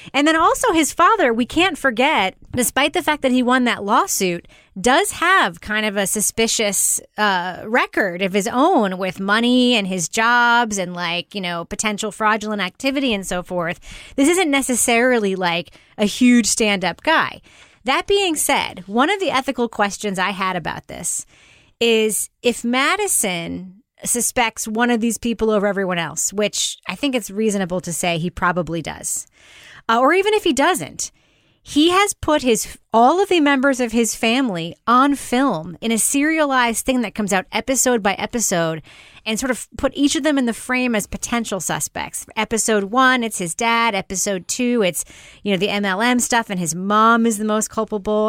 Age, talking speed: 30-49, 180 wpm